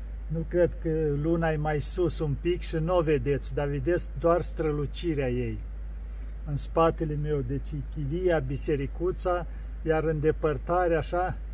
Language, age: Romanian, 50-69